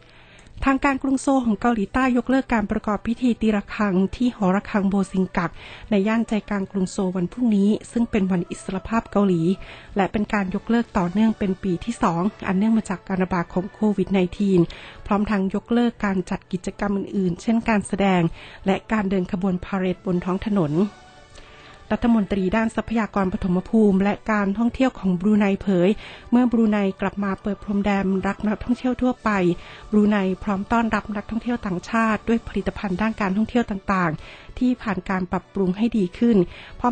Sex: female